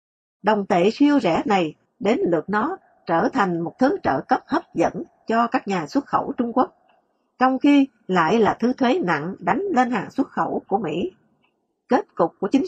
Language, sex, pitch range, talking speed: English, female, 190-260 Hz, 195 wpm